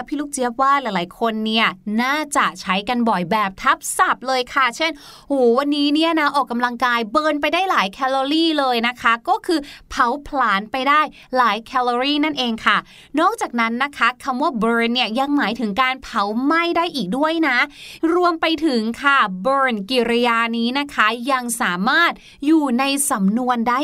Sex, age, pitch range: female, 20-39, 235-305 Hz